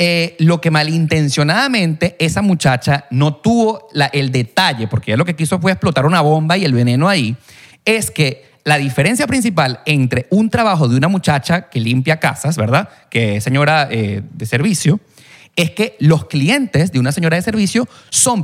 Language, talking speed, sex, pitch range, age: Spanish, 175 wpm, male, 135-195 Hz, 30-49